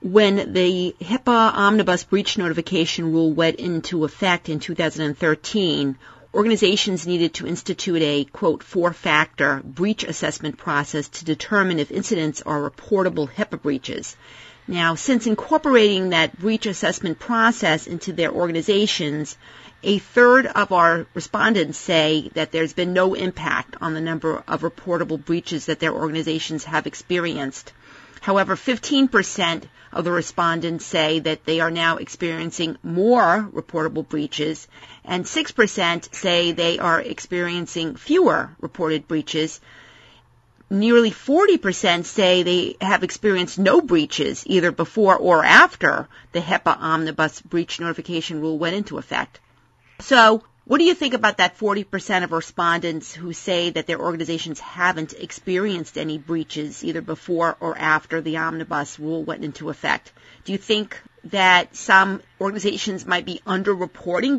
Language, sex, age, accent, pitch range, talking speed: English, female, 40-59, American, 160-200 Hz, 135 wpm